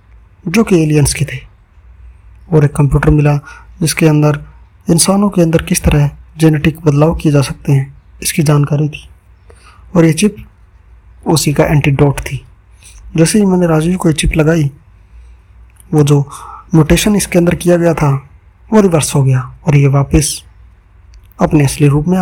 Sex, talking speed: male, 160 wpm